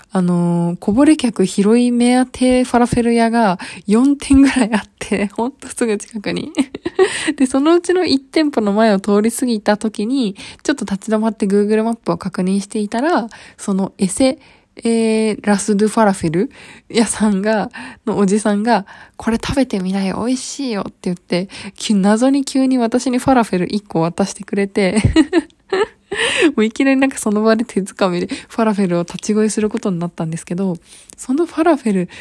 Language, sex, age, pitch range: Japanese, female, 20-39, 195-255 Hz